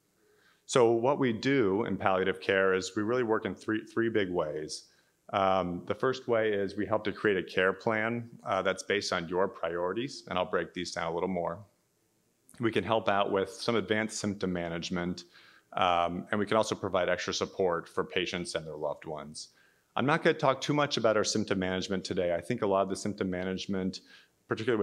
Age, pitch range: 30-49, 90-110 Hz